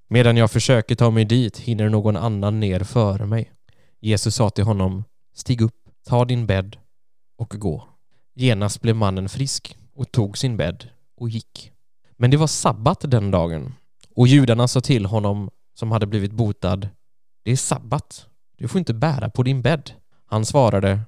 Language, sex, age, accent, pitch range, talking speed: Swedish, male, 20-39, native, 105-125 Hz, 170 wpm